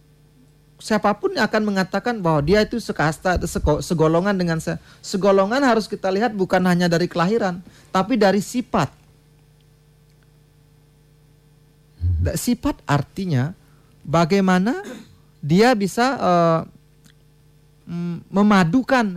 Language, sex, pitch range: Indonesian, male, 150-200 Hz